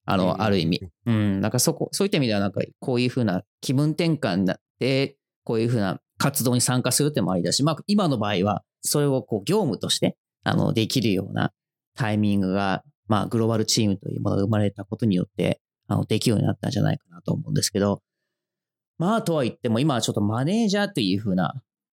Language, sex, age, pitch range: English, male, 30-49, 105-165 Hz